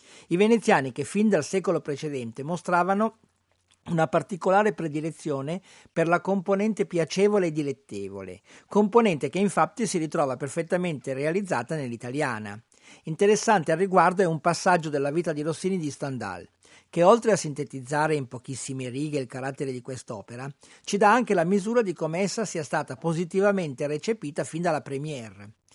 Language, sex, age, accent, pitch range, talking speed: Italian, male, 50-69, native, 135-190 Hz, 145 wpm